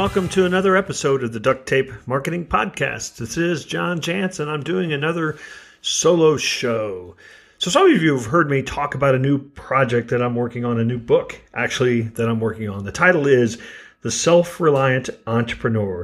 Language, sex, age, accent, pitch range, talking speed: English, male, 40-59, American, 120-160 Hz, 185 wpm